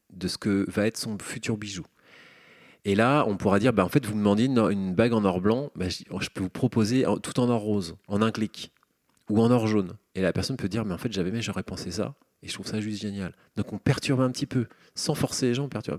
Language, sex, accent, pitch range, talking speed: French, male, French, 95-115 Hz, 270 wpm